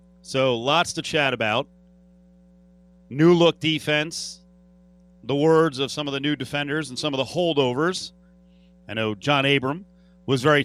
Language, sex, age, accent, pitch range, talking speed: English, male, 40-59, American, 130-180 Hz, 150 wpm